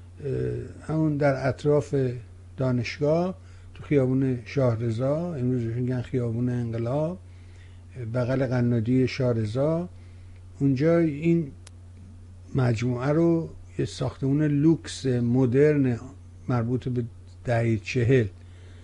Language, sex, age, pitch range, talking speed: Persian, male, 60-79, 105-145 Hz, 85 wpm